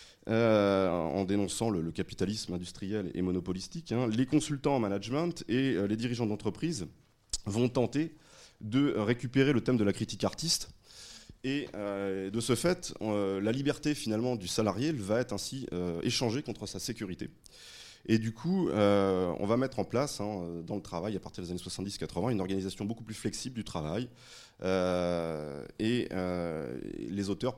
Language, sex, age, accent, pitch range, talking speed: French, male, 30-49, French, 95-120 Hz, 170 wpm